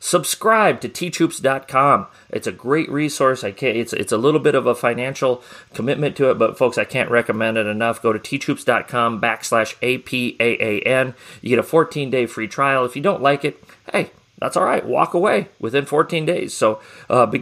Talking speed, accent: 190 wpm, American